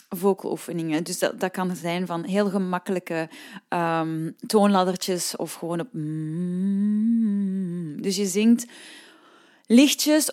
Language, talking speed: Dutch, 100 wpm